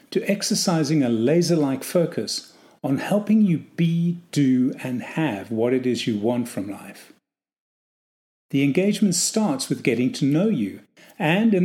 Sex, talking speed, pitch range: male, 145 wpm, 130-200 Hz